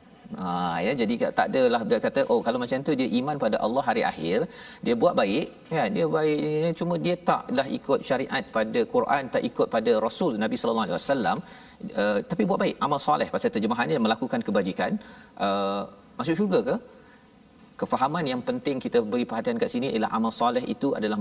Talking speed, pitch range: 190 wpm, 185-250 Hz